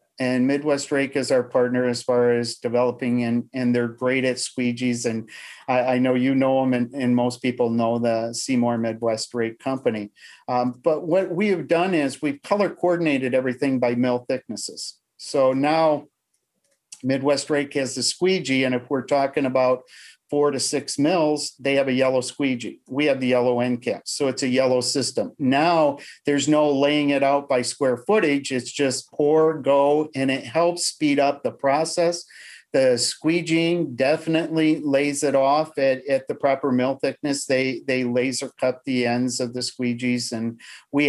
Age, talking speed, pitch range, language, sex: 50-69, 180 wpm, 125-145 Hz, English, male